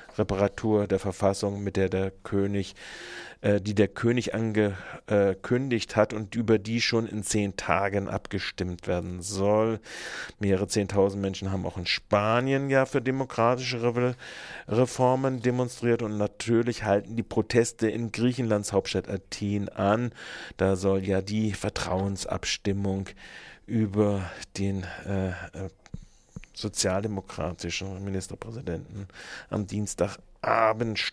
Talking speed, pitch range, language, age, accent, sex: 110 wpm, 95-110 Hz, German, 40-59, German, male